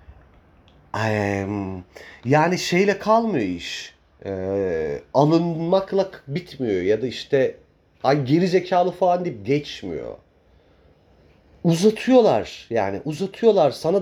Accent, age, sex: native, 40-59, male